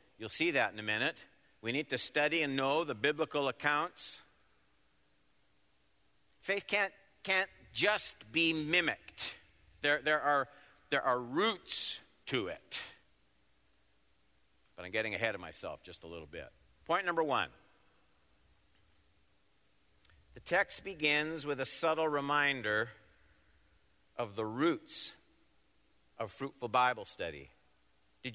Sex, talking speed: male, 120 wpm